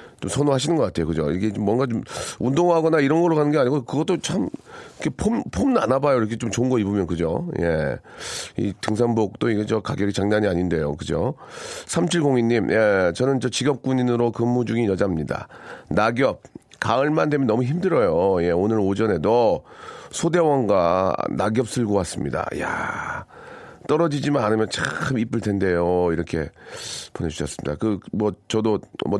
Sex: male